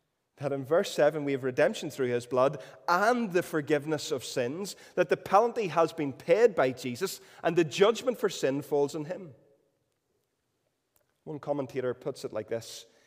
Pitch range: 140-195 Hz